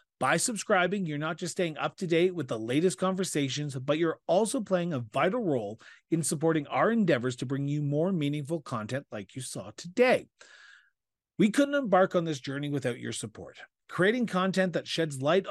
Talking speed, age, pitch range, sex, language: 185 wpm, 40-59, 140-185 Hz, male, English